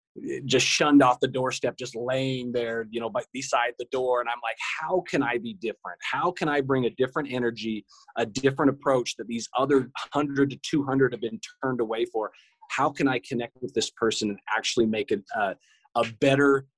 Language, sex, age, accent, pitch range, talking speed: English, male, 30-49, American, 120-145 Hz, 195 wpm